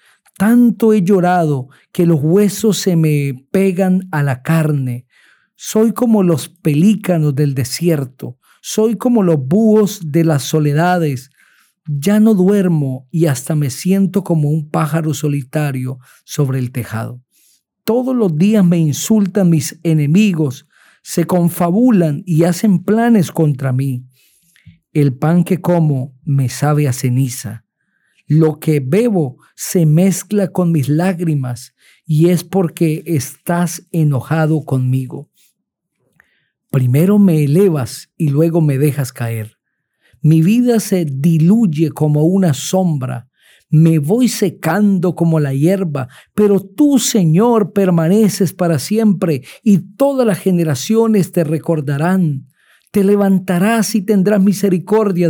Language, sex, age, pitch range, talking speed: Spanish, male, 50-69, 145-195 Hz, 125 wpm